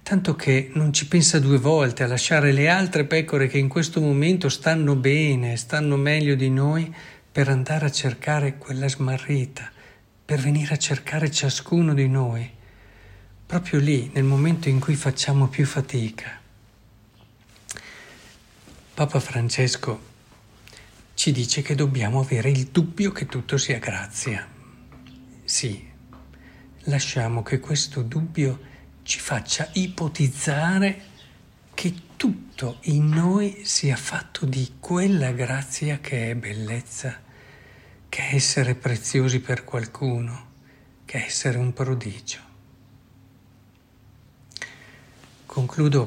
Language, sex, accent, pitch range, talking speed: Italian, male, native, 120-145 Hz, 115 wpm